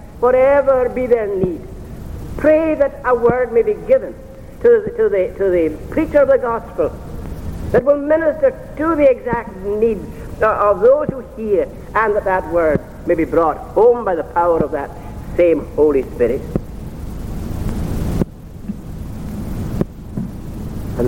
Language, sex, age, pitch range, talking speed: English, male, 60-79, 175-290 Hz, 135 wpm